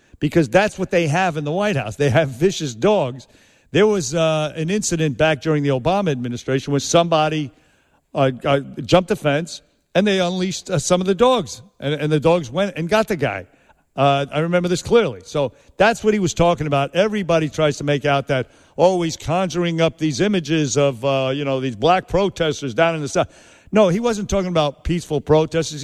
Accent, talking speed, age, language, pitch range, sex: American, 205 wpm, 50-69, English, 140-180 Hz, male